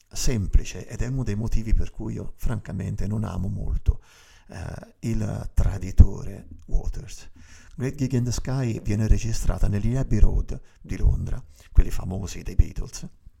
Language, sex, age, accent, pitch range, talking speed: Italian, male, 50-69, native, 95-120 Hz, 150 wpm